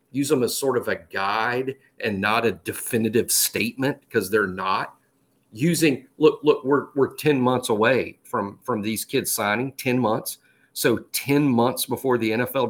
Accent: American